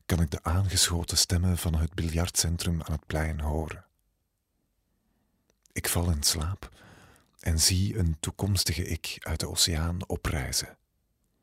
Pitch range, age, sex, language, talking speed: 85-95 Hz, 40-59, male, Dutch, 130 wpm